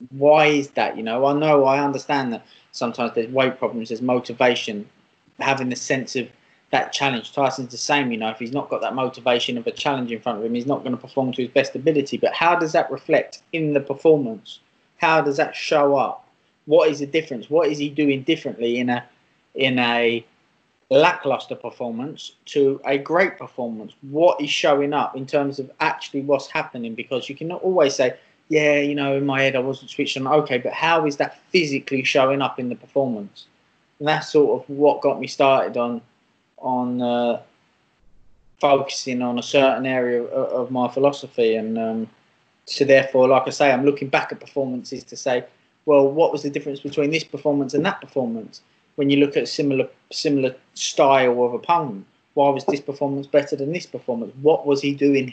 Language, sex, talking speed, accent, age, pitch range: English, male, 200 wpm, British, 20-39, 125-145 Hz